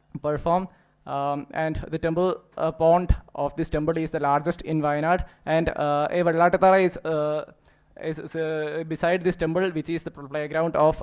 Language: English